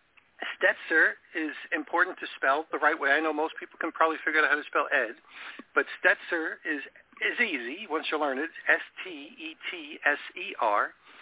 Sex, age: male, 50-69